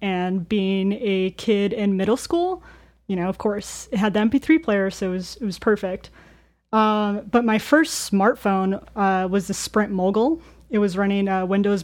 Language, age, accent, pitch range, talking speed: English, 20-39, American, 190-220 Hz, 190 wpm